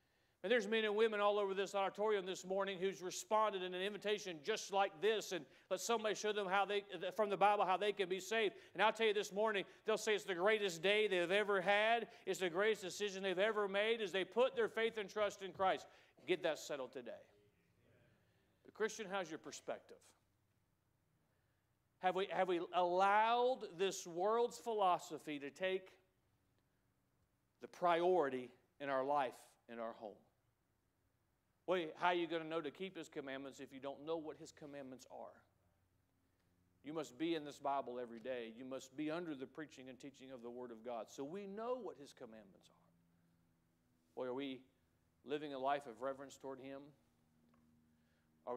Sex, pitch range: male, 120-195 Hz